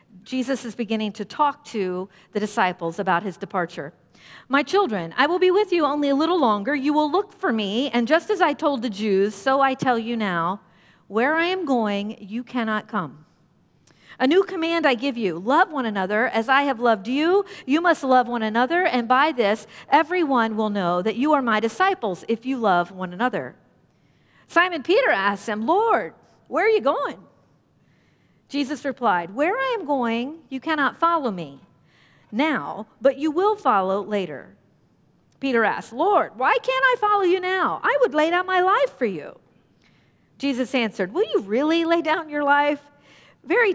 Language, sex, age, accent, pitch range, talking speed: English, female, 50-69, American, 205-315 Hz, 180 wpm